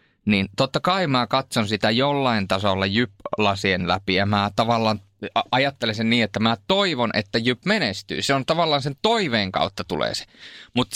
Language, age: Finnish, 20-39